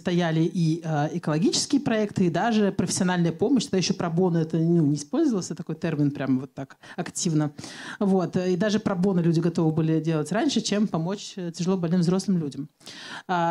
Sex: male